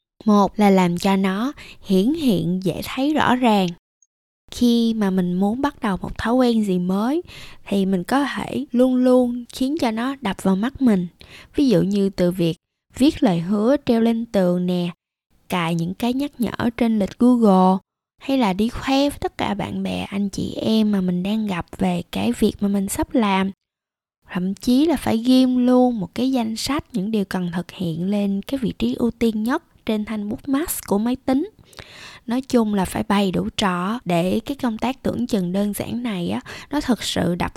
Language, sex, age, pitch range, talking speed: Vietnamese, female, 20-39, 190-245 Hz, 205 wpm